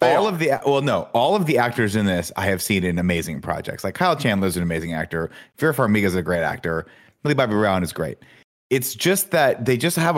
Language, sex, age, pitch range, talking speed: English, male, 30-49, 95-125 Hz, 250 wpm